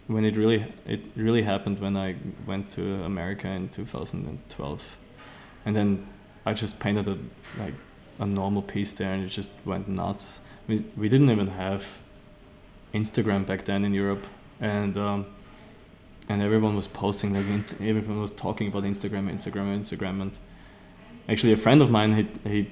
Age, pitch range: 20-39, 100-110 Hz